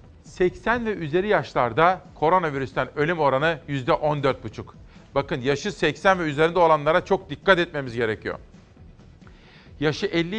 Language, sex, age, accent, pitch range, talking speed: Turkish, male, 40-59, native, 145-185 Hz, 120 wpm